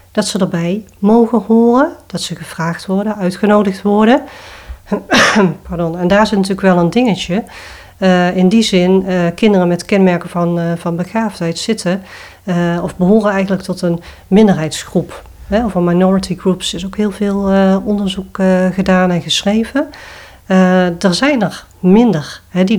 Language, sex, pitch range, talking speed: English, female, 175-205 Hz, 155 wpm